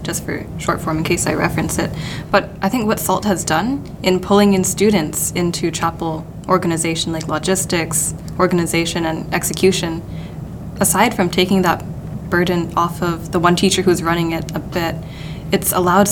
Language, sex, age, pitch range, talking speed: English, female, 10-29, 165-190 Hz, 170 wpm